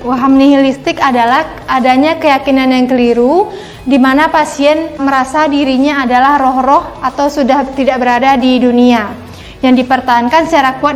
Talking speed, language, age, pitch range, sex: 125 wpm, Indonesian, 20-39, 255-285 Hz, female